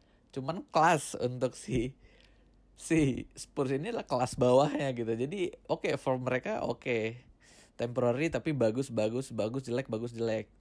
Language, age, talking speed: Indonesian, 20-39, 145 wpm